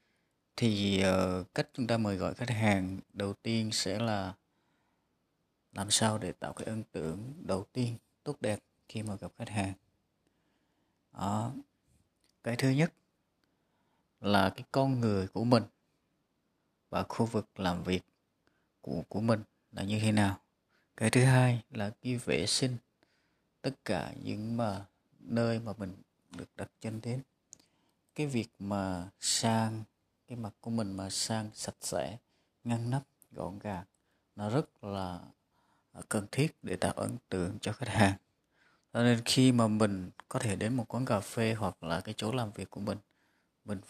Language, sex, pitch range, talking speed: Vietnamese, male, 95-115 Hz, 160 wpm